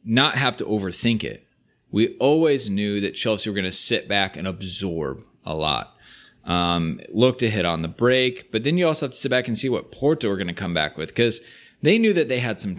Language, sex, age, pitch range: English, male, 20-39, 95-120 Hz